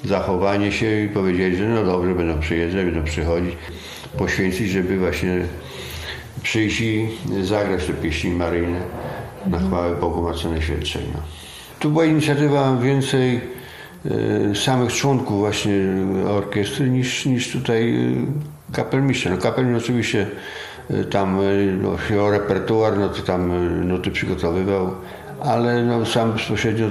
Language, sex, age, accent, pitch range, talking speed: Polish, male, 50-69, native, 90-115 Hz, 120 wpm